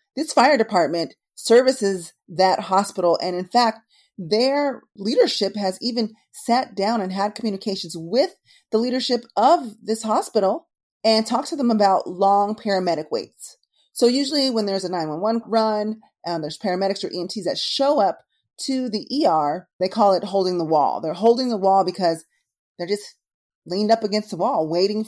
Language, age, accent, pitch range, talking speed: English, 30-49, American, 175-230 Hz, 165 wpm